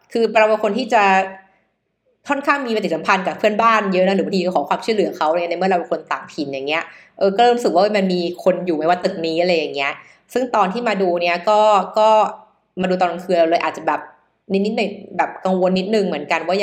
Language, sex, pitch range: Thai, female, 175-215 Hz